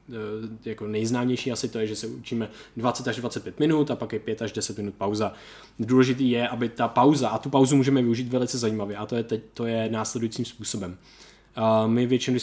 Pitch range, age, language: 115-140 Hz, 20-39, Czech